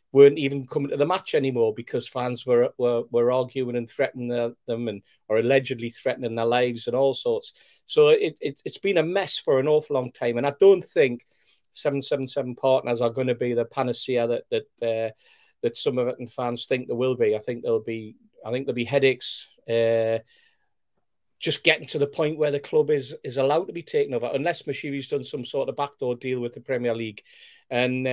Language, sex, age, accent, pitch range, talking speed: English, male, 40-59, British, 125-180 Hz, 215 wpm